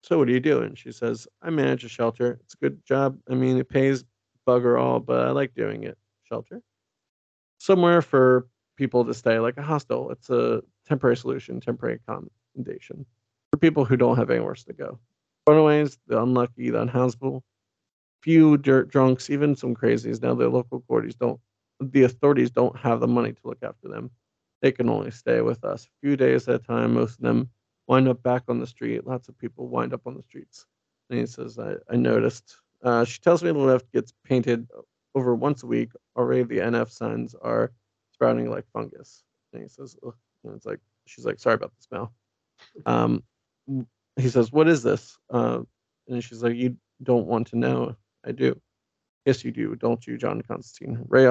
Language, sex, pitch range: English, male, 95-130 Hz